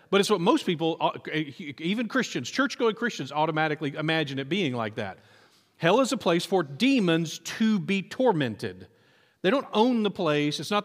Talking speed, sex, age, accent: 170 wpm, male, 40-59, American